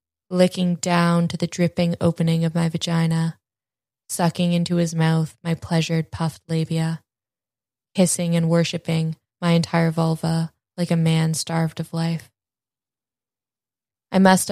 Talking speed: 130 wpm